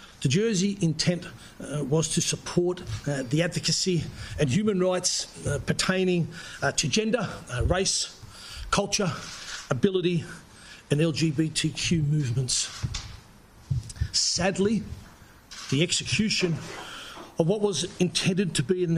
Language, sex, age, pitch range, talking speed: English, male, 50-69, 145-185 Hz, 110 wpm